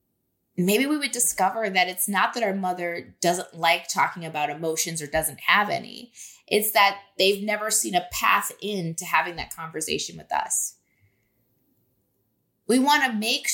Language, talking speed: English, 165 wpm